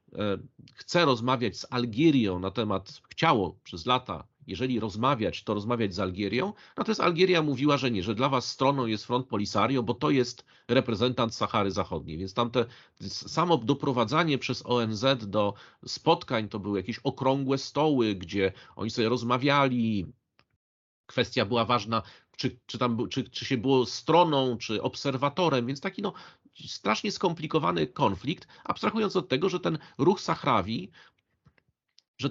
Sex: male